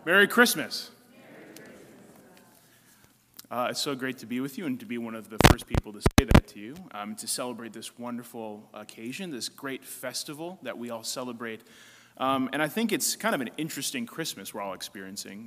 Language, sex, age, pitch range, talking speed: English, male, 30-49, 105-130 Hz, 190 wpm